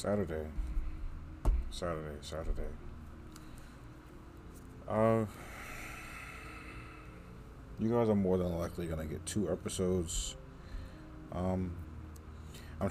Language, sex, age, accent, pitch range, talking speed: English, male, 30-49, American, 80-95 Hz, 80 wpm